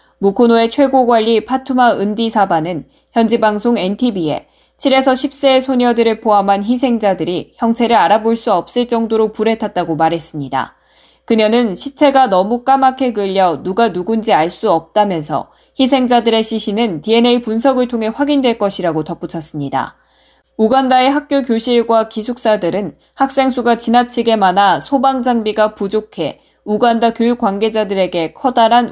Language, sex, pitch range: Korean, female, 195-250 Hz